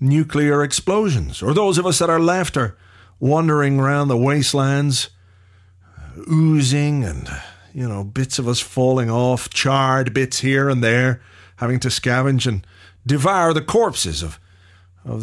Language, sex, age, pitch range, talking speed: English, male, 50-69, 95-145 Hz, 150 wpm